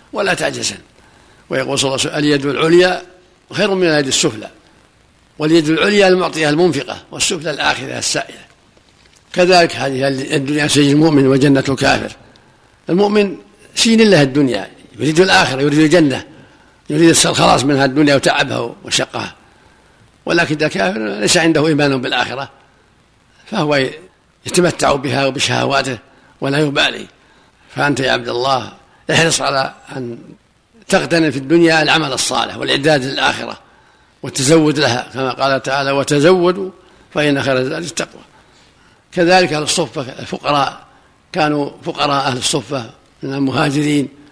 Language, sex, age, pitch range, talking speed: Arabic, male, 60-79, 135-170 Hz, 110 wpm